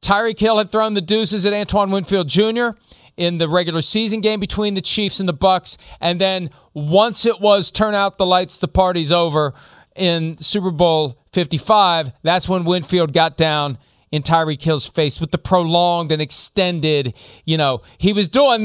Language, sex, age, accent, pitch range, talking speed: English, male, 40-59, American, 160-215 Hz, 180 wpm